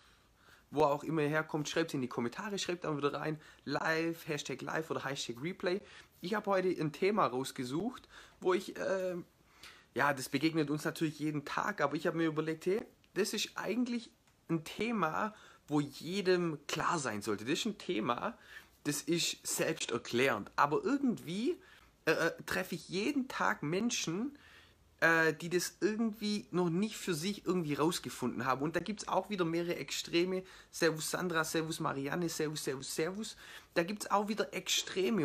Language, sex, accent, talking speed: German, male, German, 165 wpm